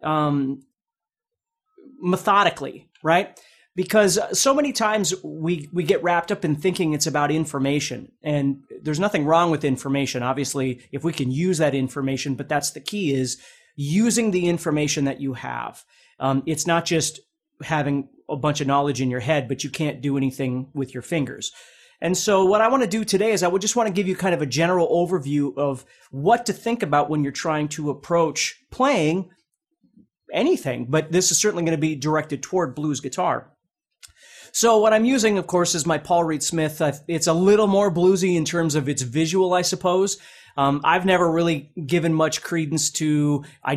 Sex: male